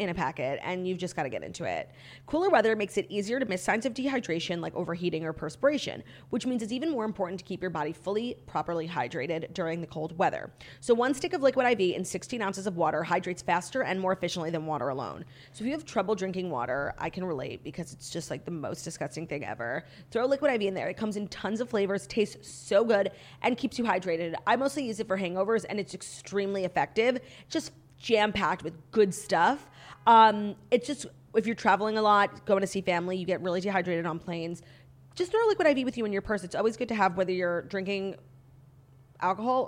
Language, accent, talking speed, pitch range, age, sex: English, American, 225 wpm, 175-215 Hz, 30-49, female